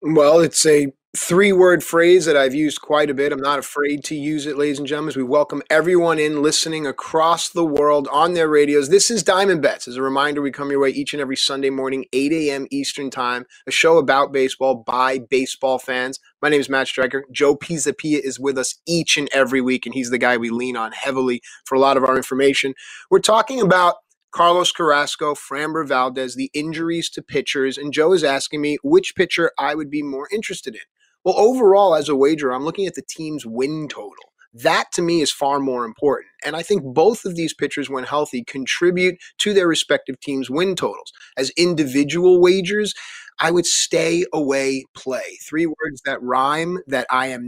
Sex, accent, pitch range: male, American, 135-170 Hz